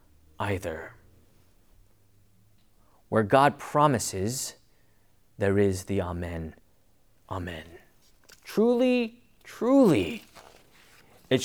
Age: 30-49